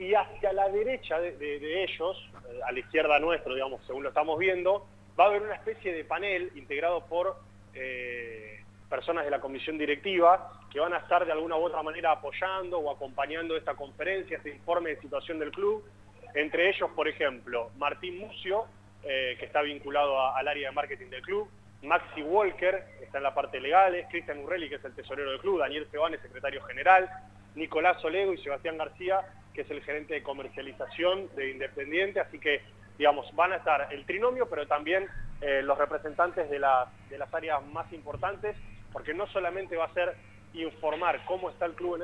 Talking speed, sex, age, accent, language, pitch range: 195 wpm, male, 30-49, Argentinian, Spanish, 135-175 Hz